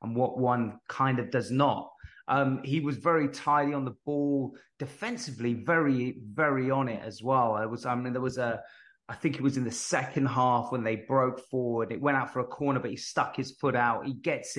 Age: 30-49